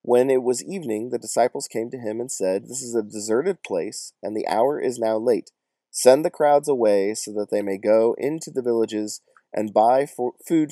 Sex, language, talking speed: male, English, 205 wpm